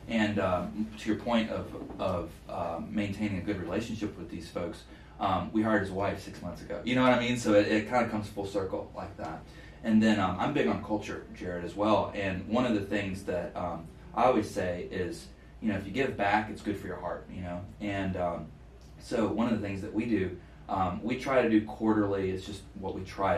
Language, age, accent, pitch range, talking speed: English, 30-49, American, 95-105 Hz, 240 wpm